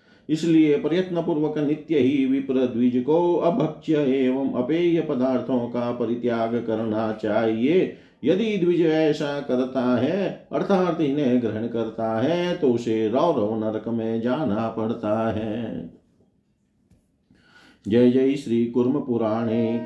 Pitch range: 110-135 Hz